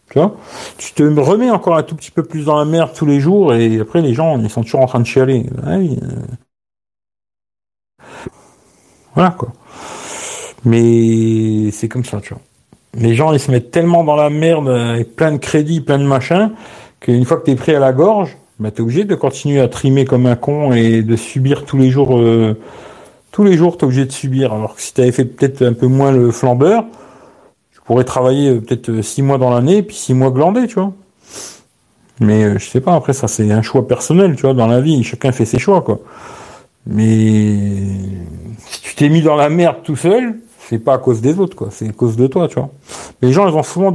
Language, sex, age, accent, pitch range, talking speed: French, male, 50-69, French, 120-165 Hz, 215 wpm